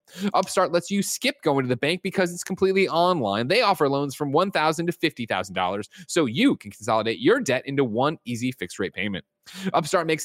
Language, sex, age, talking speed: English, male, 30-49, 195 wpm